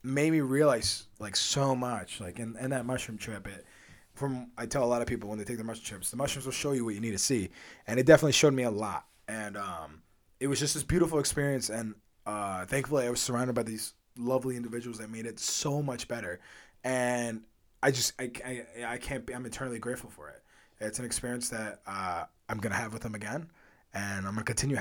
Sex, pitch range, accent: male, 110-140 Hz, American